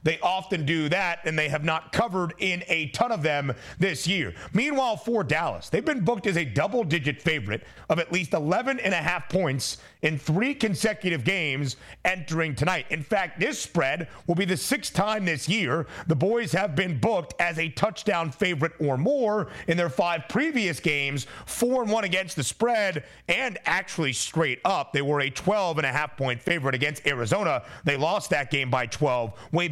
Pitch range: 145-195 Hz